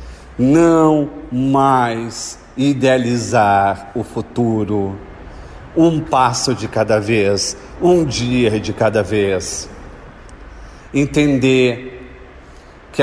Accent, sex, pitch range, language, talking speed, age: Brazilian, male, 105-135 Hz, Portuguese, 80 wpm, 40-59